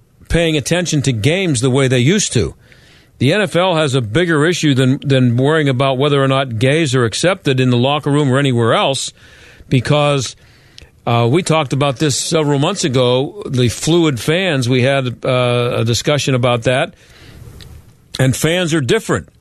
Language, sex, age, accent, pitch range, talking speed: English, male, 50-69, American, 120-155 Hz, 170 wpm